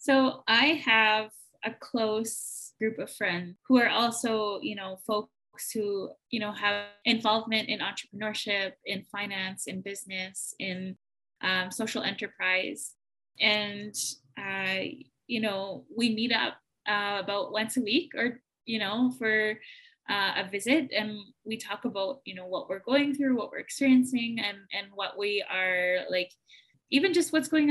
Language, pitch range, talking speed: English, 205-250 Hz, 155 wpm